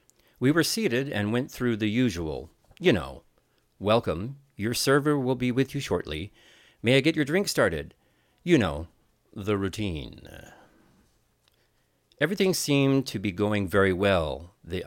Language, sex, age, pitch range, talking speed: English, male, 40-59, 95-140 Hz, 145 wpm